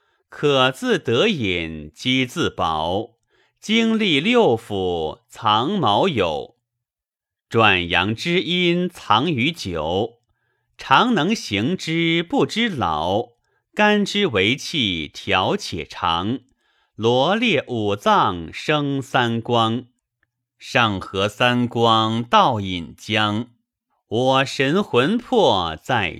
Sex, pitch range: male, 110-185 Hz